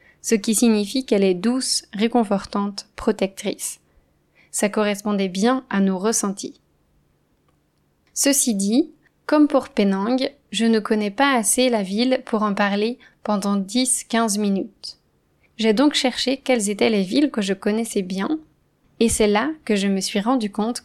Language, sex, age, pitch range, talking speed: French, female, 20-39, 200-245 Hz, 150 wpm